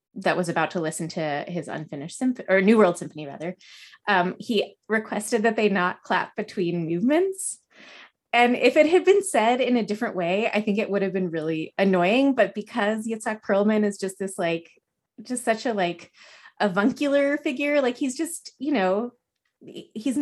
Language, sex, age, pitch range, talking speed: English, female, 20-39, 175-235 Hz, 180 wpm